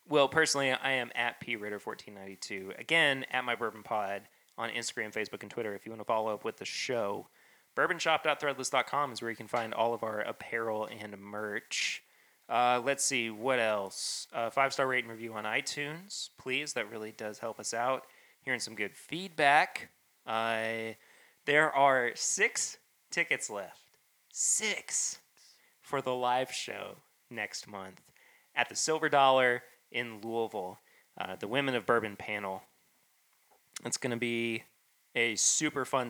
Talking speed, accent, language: 150 wpm, American, English